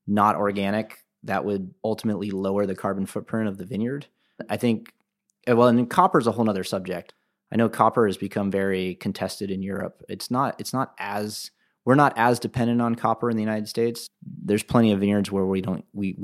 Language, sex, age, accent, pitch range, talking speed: English, male, 30-49, American, 100-115 Hz, 195 wpm